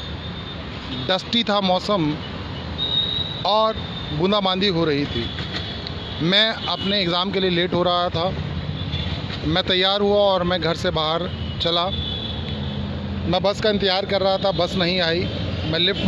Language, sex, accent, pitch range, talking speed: Hindi, male, native, 160-195 Hz, 140 wpm